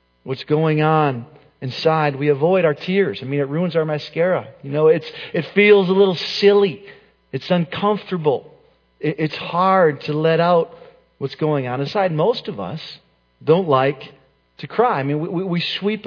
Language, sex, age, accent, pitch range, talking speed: English, male, 40-59, American, 145-185 Hz, 170 wpm